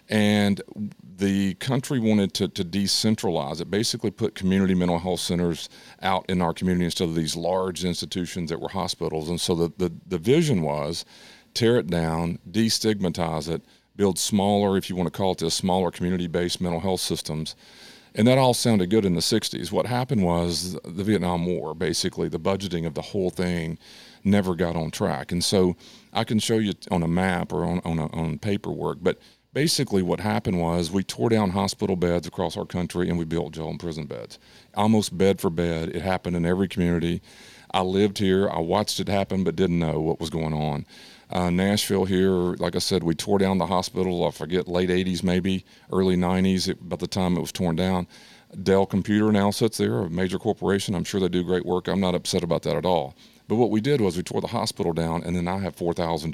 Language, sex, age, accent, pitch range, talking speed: English, male, 40-59, American, 85-100 Hz, 210 wpm